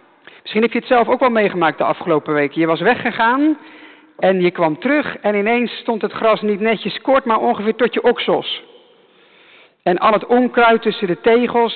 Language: English